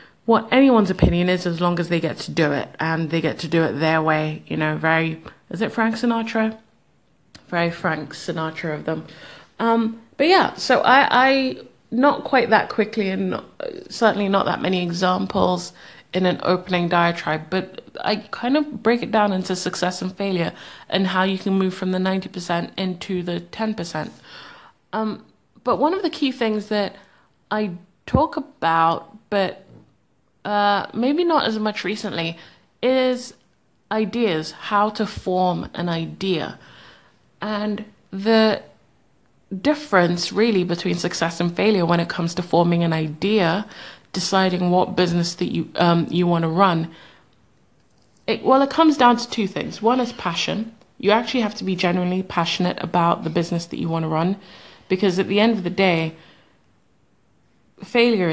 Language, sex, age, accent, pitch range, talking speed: English, female, 30-49, British, 170-215 Hz, 165 wpm